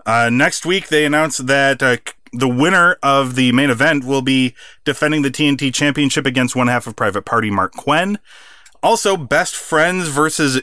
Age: 30-49